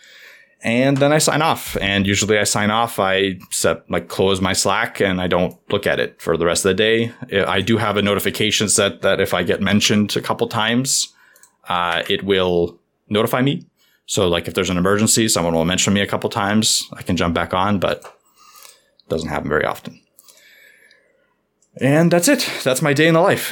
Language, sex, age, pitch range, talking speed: English, male, 20-39, 100-130 Hz, 205 wpm